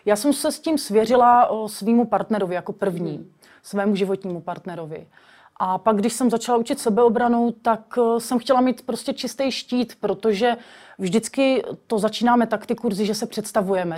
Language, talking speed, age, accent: Czech, 160 wpm, 30-49, native